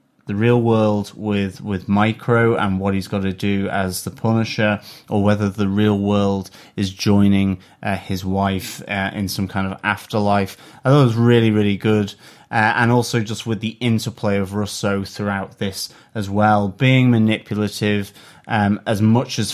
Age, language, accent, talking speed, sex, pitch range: 30-49, English, British, 175 wpm, male, 100-115 Hz